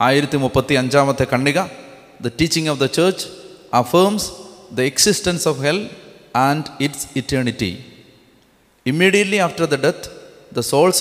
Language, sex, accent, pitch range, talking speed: Malayalam, male, native, 125-165 Hz, 115 wpm